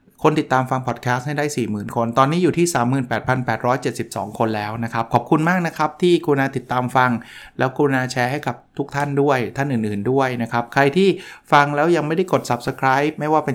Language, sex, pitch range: Thai, male, 120-150 Hz